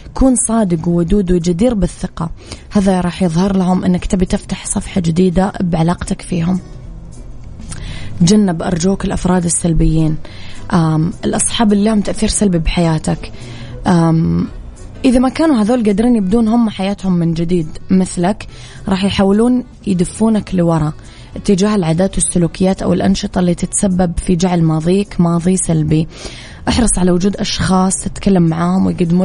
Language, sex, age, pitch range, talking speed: Arabic, female, 20-39, 165-195 Hz, 125 wpm